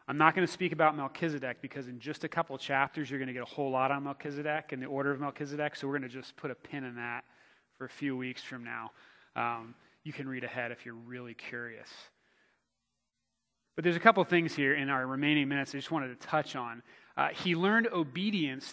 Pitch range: 130-160 Hz